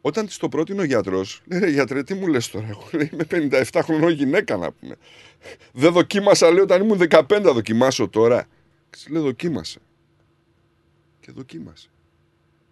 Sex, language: male, Greek